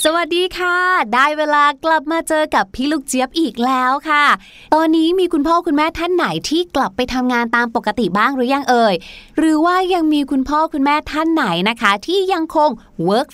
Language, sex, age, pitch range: Thai, female, 20-39, 230-305 Hz